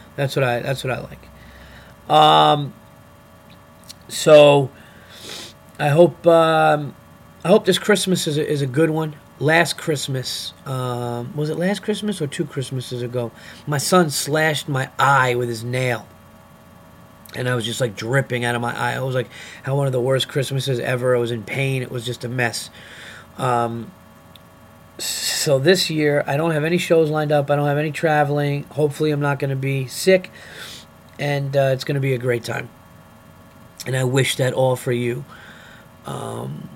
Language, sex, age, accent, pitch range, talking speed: English, male, 30-49, American, 120-145 Hz, 180 wpm